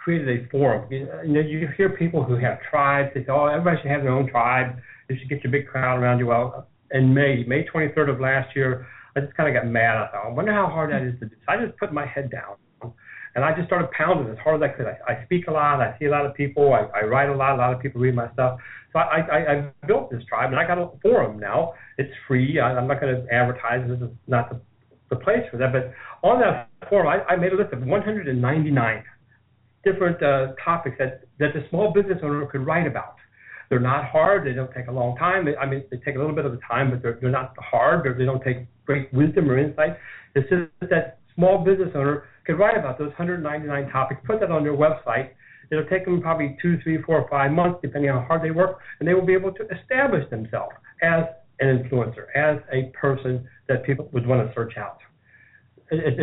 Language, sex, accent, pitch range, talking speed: English, male, American, 130-160 Hz, 250 wpm